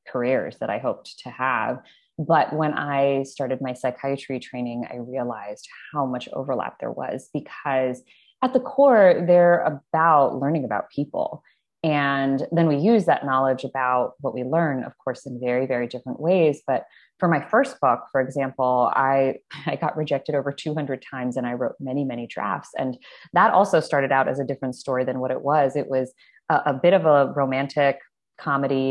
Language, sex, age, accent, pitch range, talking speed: English, female, 20-39, American, 130-145 Hz, 185 wpm